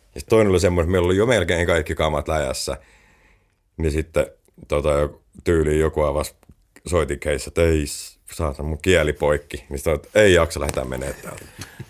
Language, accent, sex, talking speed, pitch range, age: Finnish, native, male, 170 wpm, 75-100 Hz, 30-49